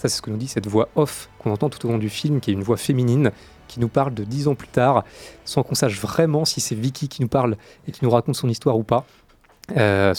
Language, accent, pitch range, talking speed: French, French, 110-140 Hz, 285 wpm